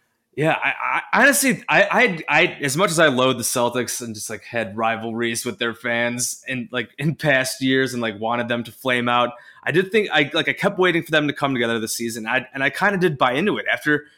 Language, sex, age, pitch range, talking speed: English, male, 20-39, 115-140 Hz, 245 wpm